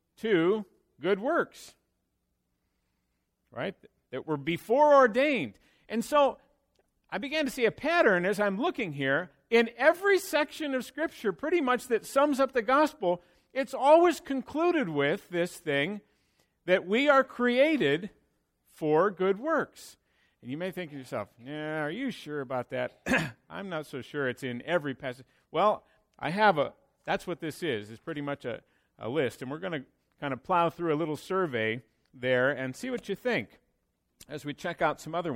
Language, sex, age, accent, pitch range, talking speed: English, male, 50-69, American, 135-225 Hz, 175 wpm